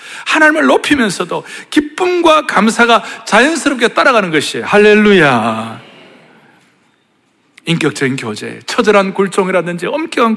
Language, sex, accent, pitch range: Korean, male, native, 155-245 Hz